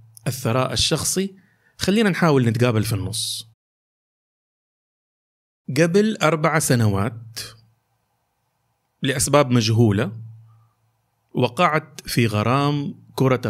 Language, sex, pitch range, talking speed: Arabic, male, 110-140 Hz, 70 wpm